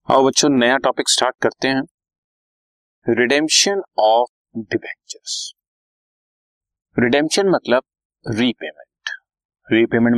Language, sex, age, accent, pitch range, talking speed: Hindi, male, 30-49, native, 105-140 Hz, 75 wpm